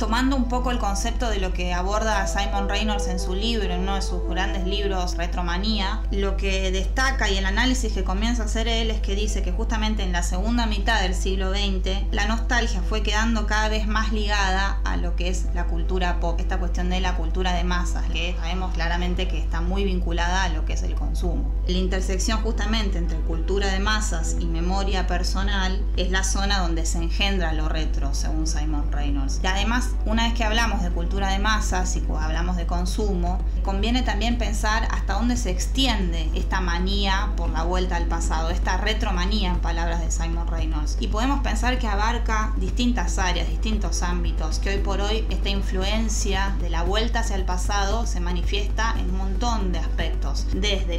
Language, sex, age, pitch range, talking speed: Spanish, female, 20-39, 185-220 Hz, 195 wpm